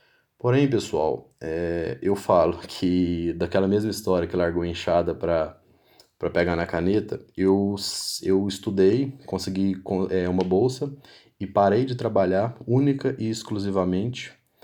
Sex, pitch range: male, 90-110 Hz